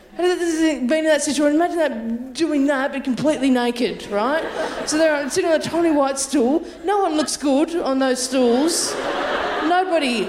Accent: Australian